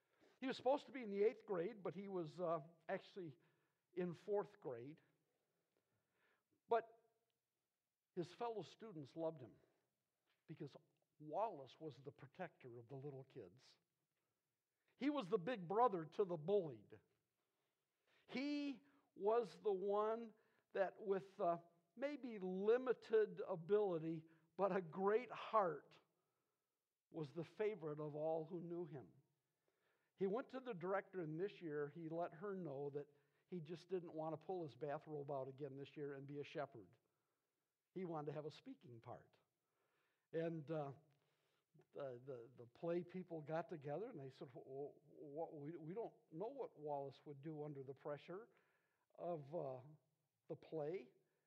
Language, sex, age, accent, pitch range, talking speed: English, male, 60-79, American, 150-215 Hz, 150 wpm